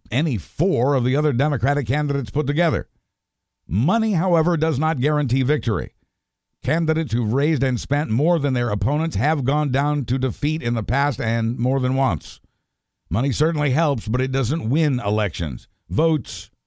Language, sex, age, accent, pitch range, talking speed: English, male, 60-79, American, 110-140 Hz, 160 wpm